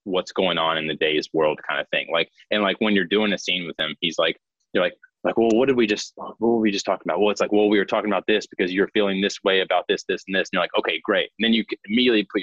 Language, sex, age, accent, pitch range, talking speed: English, male, 20-39, American, 100-145 Hz, 315 wpm